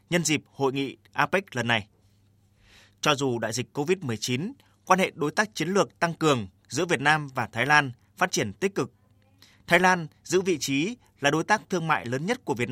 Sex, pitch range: male, 115-160 Hz